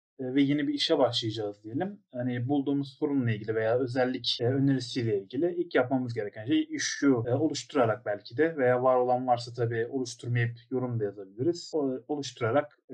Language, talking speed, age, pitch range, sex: Turkish, 155 wpm, 30-49, 120-140 Hz, male